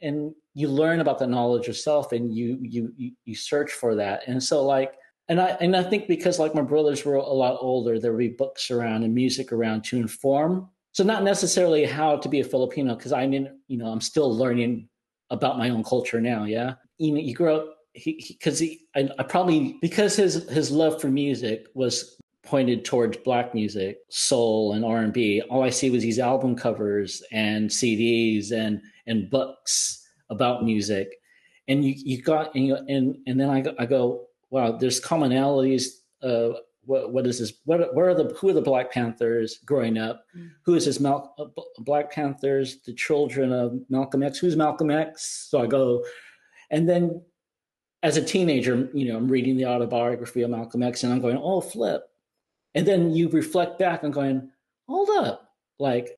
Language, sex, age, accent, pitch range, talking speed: English, male, 40-59, American, 120-155 Hz, 190 wpm